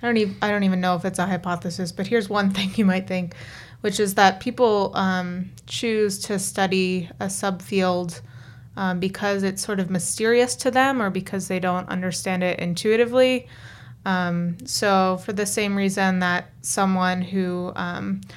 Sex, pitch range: female, 175-195 Hz